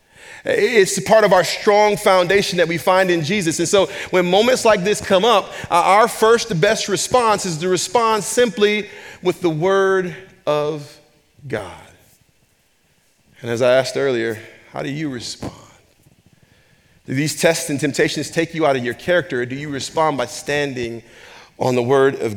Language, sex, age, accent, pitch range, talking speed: English, male, 40-59, American, 140-195 Hz, 170 wpm